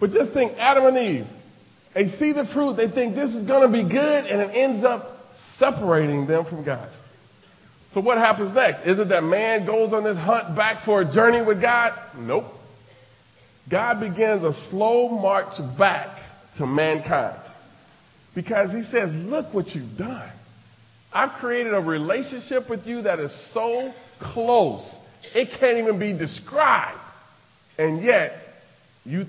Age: 40-59